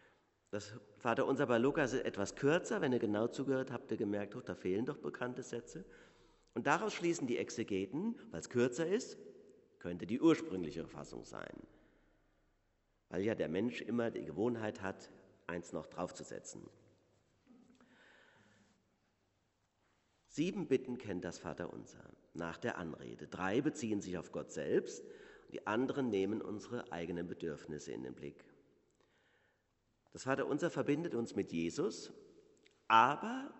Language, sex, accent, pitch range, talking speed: German, male, German, 90-125 Hz, 135 wpm